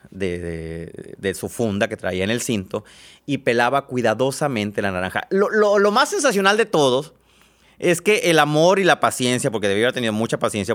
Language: Spanish